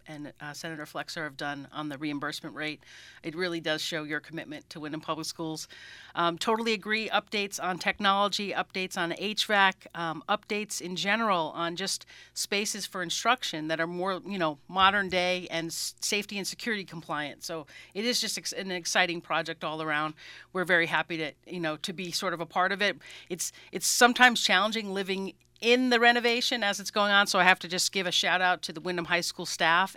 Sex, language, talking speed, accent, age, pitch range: female, English, 205 wpm, American, 40-59, 165-200 Hz